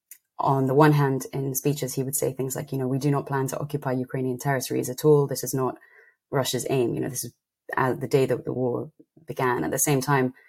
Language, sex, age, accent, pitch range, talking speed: English, female, 30-49, British, 125-145 Hz, 245 wpm